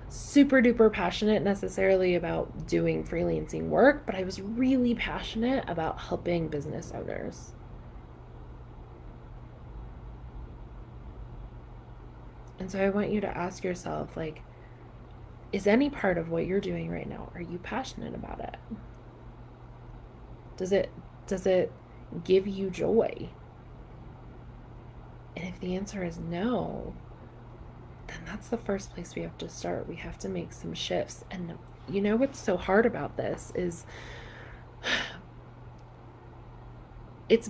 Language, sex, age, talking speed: English, female, 20-39, 125 wpm